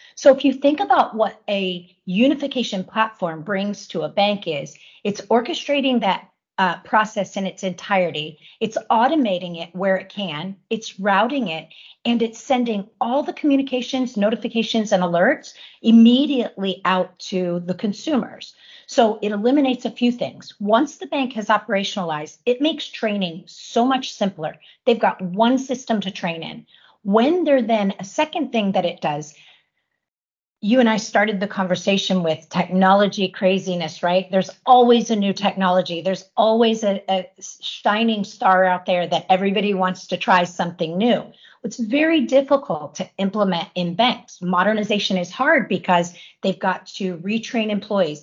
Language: English